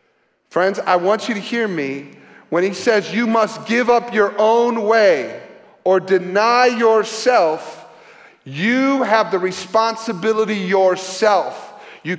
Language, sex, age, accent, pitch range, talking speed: English, male, 40-59, American, 200-265 Hz, 130 wpm